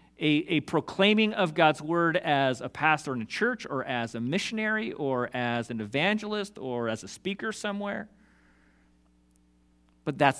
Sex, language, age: male, English, 40-59